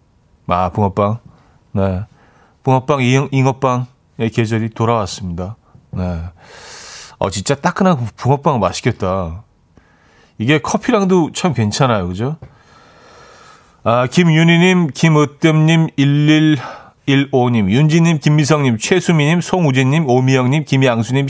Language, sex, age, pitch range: Korean, male, 40-59, 115-155 Hz